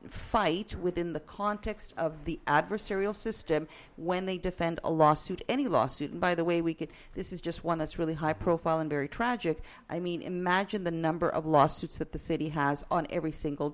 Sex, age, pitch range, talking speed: female, 50-69, 155-185 Hz, 200 wpm